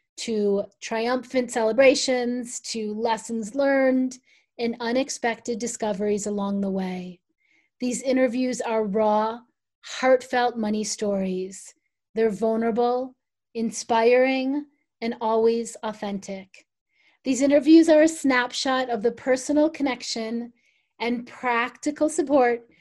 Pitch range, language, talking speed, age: 220-260 Hz, English, 95 wpm, 30-49